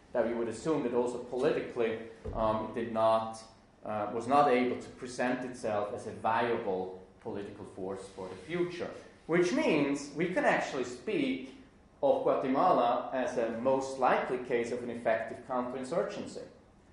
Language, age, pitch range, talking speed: English, 30-49, 115-140 Hz, 150 wpm